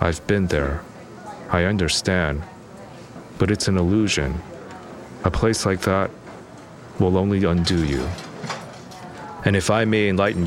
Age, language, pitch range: 40-59, English, 85-100 Hz